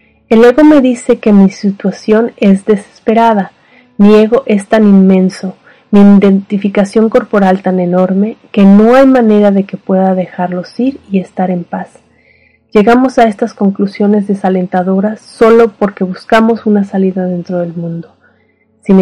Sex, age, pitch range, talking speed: female, 30-49, 185-225 Hz, 145 wpm